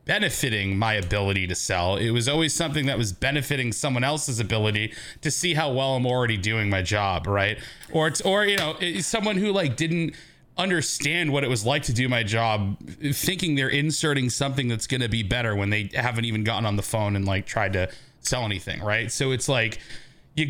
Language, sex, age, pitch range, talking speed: English, male, 30-49, 115-155 Hz, 210 wpm